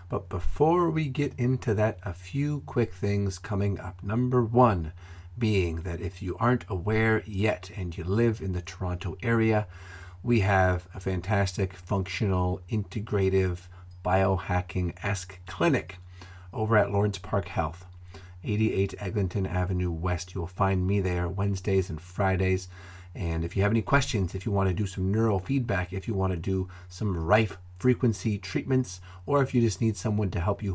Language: English